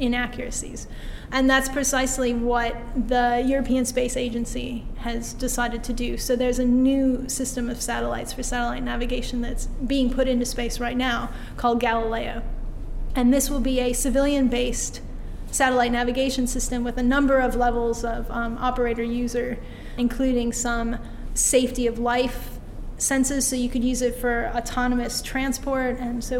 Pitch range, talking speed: 240-255 Hz, 150 wpm